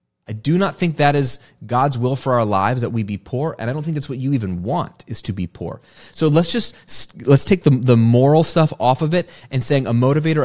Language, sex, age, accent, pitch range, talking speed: English, male, 30-49, American, 105-155 Hz, 255 wpm